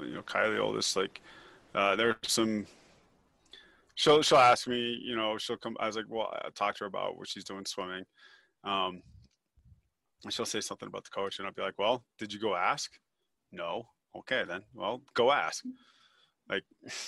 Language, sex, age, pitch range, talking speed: English, male, 20-39, 105-120 Hz, 190 wpm